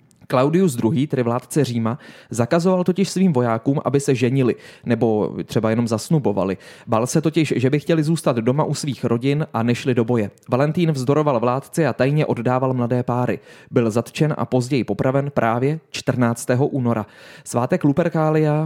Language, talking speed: Czech, 160 wpm